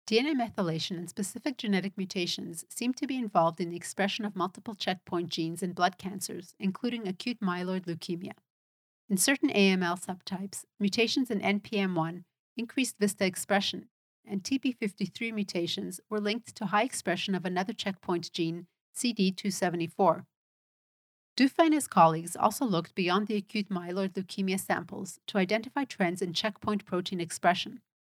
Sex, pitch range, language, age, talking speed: female, 180-225 Hz, English, 40-59, 140 wpm